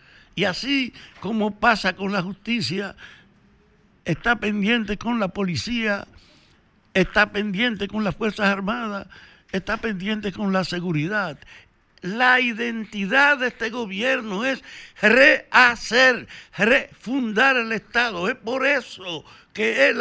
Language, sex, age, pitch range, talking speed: Spanish, male, 60-79, 195-245 Hz, 115 wpm